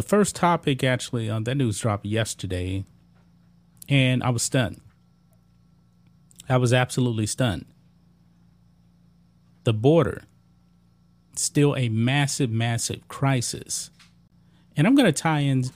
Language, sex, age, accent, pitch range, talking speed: English, male, 30-49, American, 100-135 Hz, 115 wpm